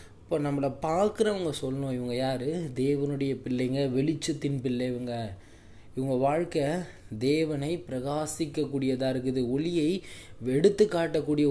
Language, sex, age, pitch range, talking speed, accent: Tamil, male, 20-39, 120-155 Hz, 90 wpm, native